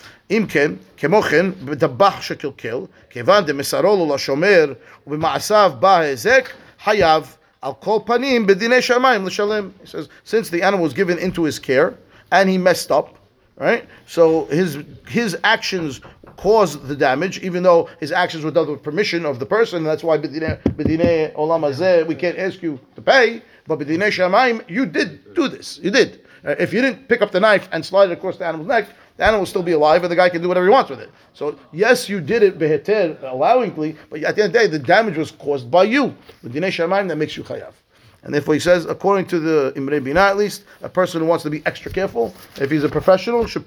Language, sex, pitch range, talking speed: English, male, 155-200 Hz, 175 wpm